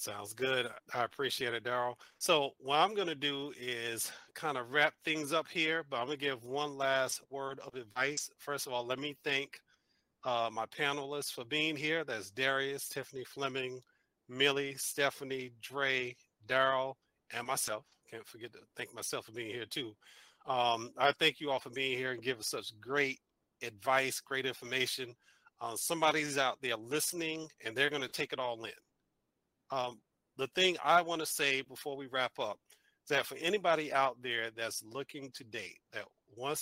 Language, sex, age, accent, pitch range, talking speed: English, male, 40-59, American, 125-150 Hz, 180 wpm